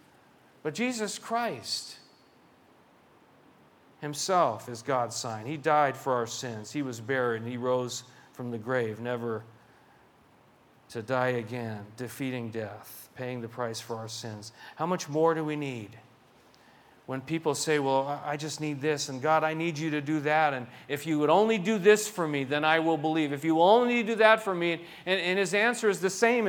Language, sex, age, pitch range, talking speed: English, male, 40-59, 130-185 Hz, 185 wpm